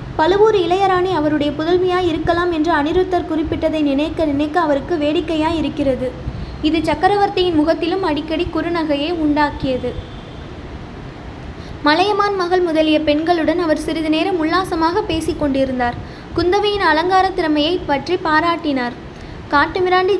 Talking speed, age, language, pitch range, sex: 100 wpm, 20-39, Tamil, 300-360 Hz, female